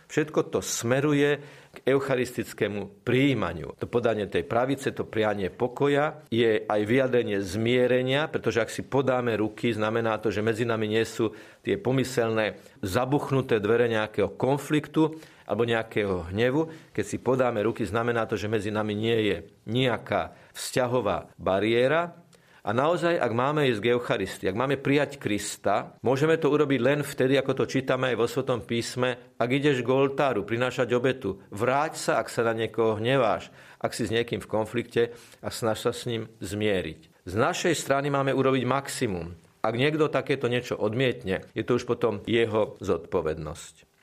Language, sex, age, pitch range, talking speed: Slovak, male, 40-59, 110-135 Hz, 160 wpm